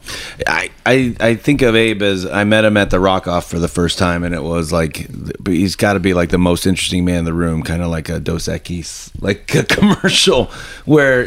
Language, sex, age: English, male, 30-49